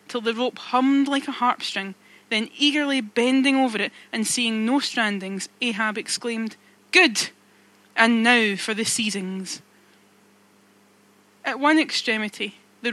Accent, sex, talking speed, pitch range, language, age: British, female, 135 wpm, 205-245 Hz, English, 20-39